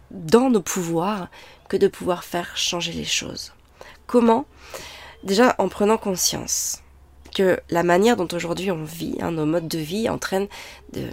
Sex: female